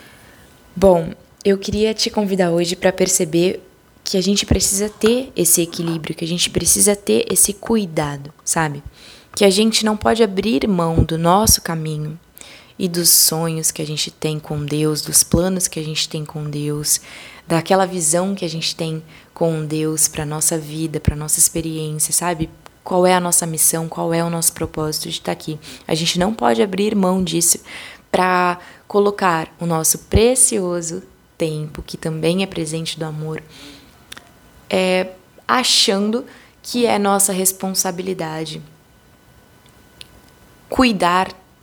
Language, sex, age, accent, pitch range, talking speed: Portuguese, female, 20-39, Brazilian, 160-190 Hz, 150 wpm